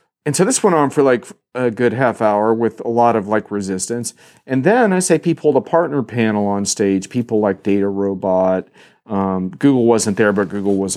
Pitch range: 105-145 Hz